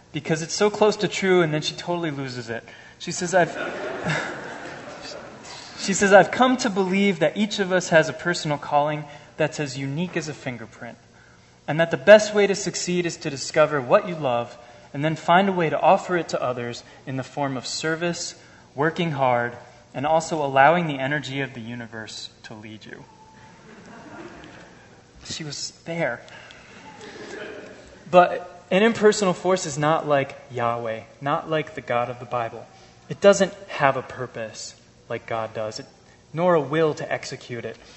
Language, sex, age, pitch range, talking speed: English, male, 20-39, 120-165 Hz, 170 wpm